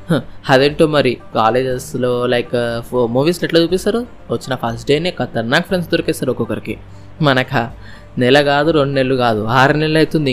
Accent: native